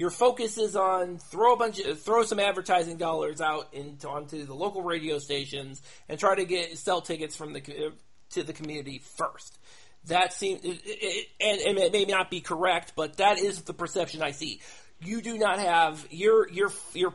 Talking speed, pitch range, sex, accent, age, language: 195 wpm, 160-225 Hz, male, American, 40-59, English